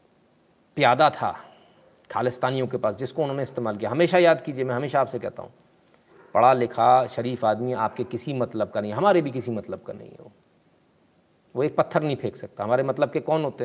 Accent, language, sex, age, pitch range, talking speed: native, Hindi, male, 40-59, 120-160 Hz, 195 wpm